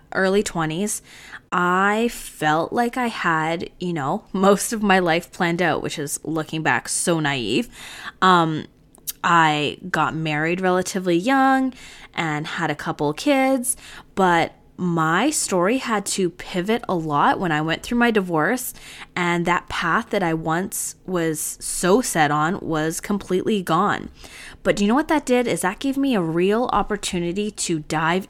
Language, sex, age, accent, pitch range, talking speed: English, female, 20-39, American, 160-210 Hz, 160 wpm